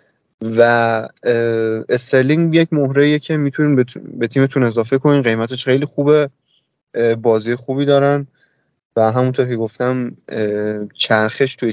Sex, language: male, Persian